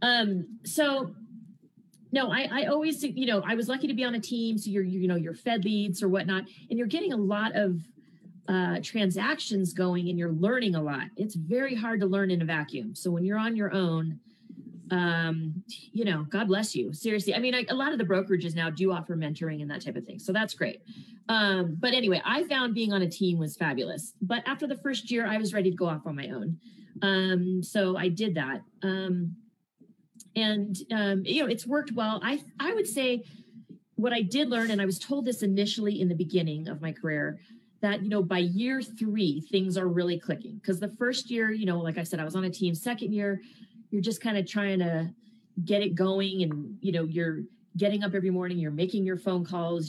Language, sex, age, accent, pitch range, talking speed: English, female, 30-49, American, 180-225 Hz, 225 wpm